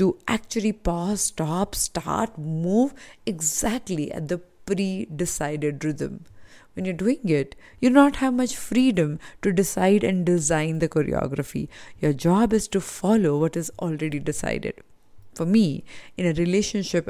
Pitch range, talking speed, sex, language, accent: 165-215 Hz, 140 wpm, female, English, Indian